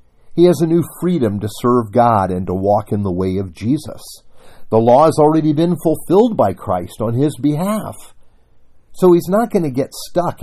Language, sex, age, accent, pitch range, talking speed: English, male, 50-69, American, 95-150 Hz, 195 wpm